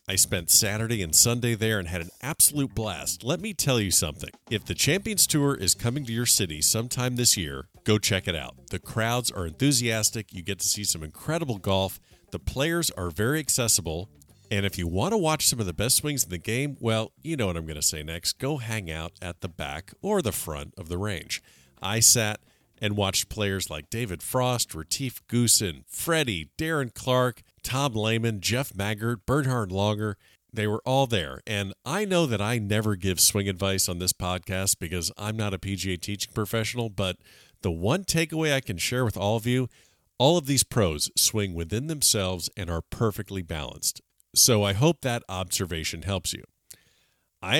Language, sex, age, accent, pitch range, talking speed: English, male, 50-69, American, 95-125 Hz, 195 wpm